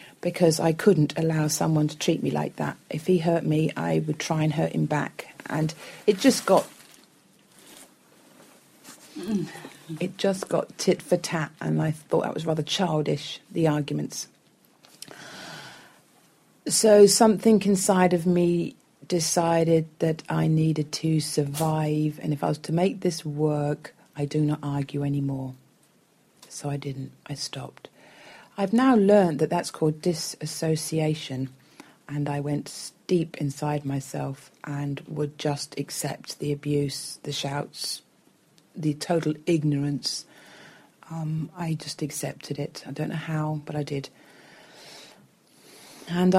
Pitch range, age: 150-175 Hz, 40-59